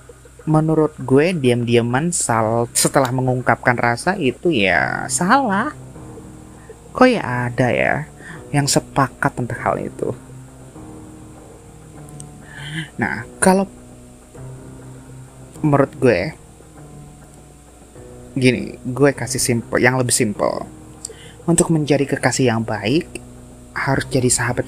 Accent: native